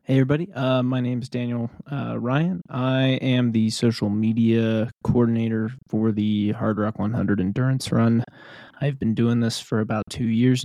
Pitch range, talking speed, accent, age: 110-125 Hz, 170 wpm, American, 20-39